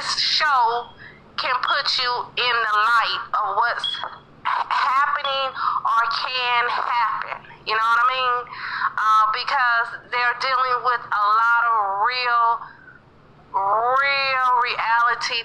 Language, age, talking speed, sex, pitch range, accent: English, 30-49, 115 wpm, female, 220-255 Hz, American